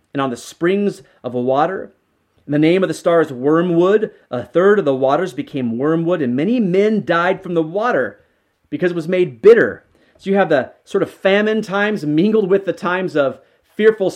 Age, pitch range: 30-49, 140-185 Hz